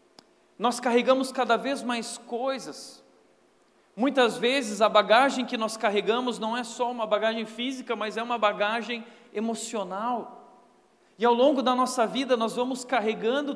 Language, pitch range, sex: Portuguese, 195-245 Hz, male